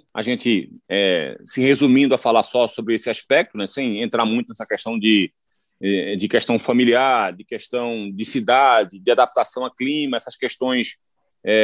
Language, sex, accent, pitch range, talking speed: Portuguese, male, Brazilian, 115-145 Hz, 165 wpm